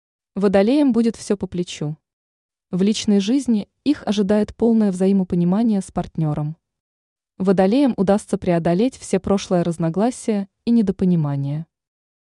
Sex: female